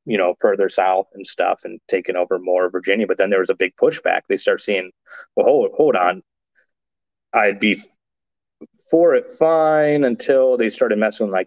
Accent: American